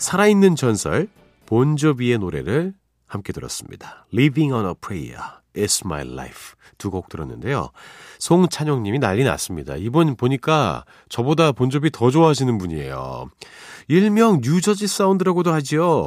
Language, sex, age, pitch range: Korean, male, 40-59, 95-150 Hz